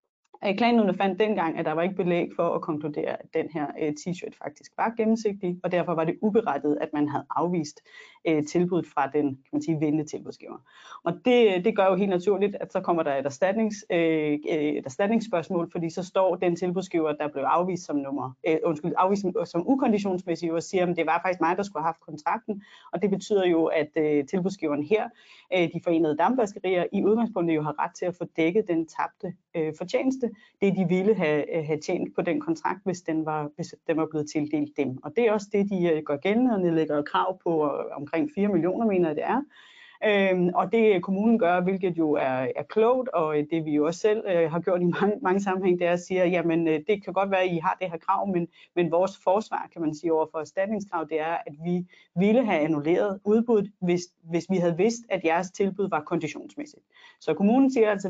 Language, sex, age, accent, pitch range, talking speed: Danish, female, 30-49, native, 160-205 Hz, 215 wpm